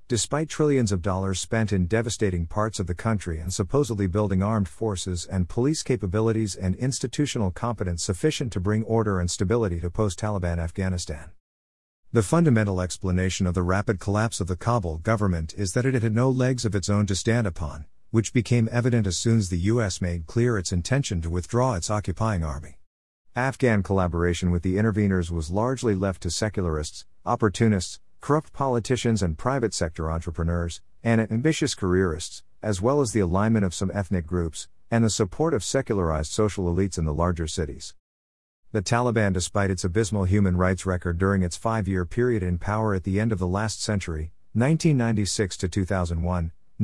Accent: American